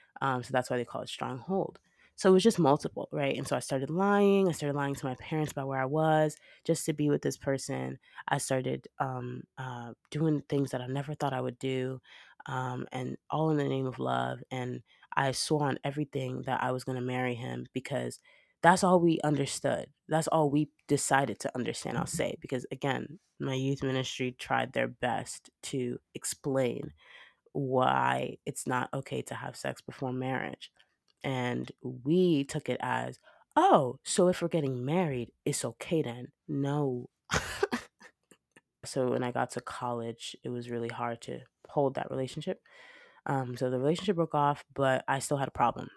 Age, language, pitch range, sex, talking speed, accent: 20-39, English, 125-150 Hz, female, 185 wpm, American